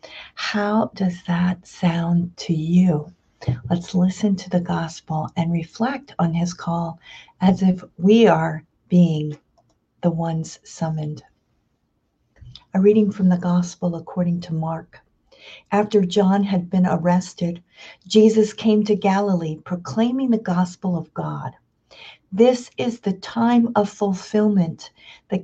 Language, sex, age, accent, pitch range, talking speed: English, female, 50-69, American, 165-195 Hz, 125 wpm